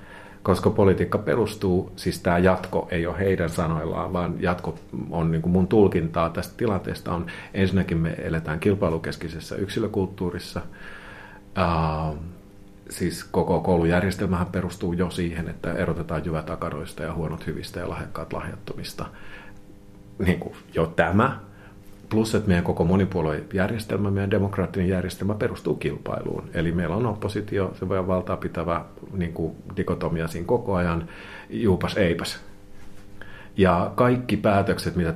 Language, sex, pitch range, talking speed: Finnish, male, 85-100 Hz, 125 wpm